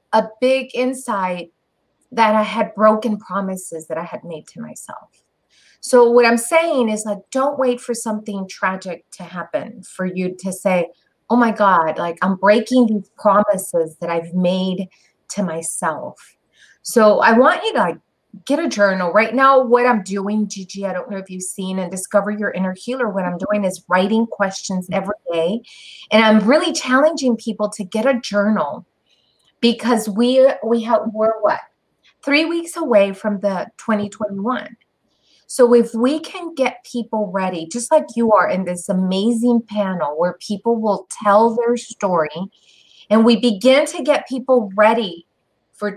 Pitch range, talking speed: 190-240 Hz, 165 wpm